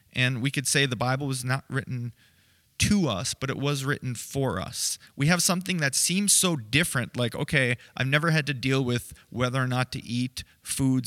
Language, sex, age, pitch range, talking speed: English, male, 30-49, 125-145 Hz, 205 wpm